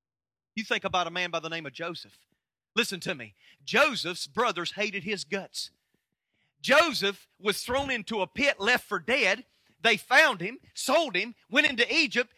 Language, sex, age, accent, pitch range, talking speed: English, male, 40-59, American, 195-270 Hz, 170 wpm